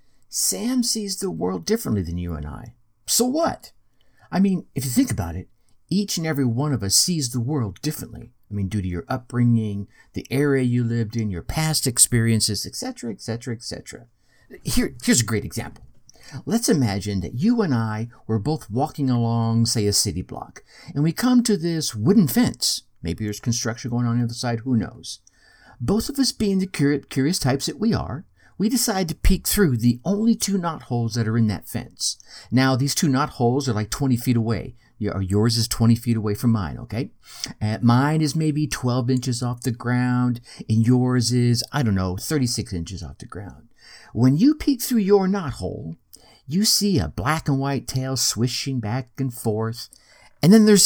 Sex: male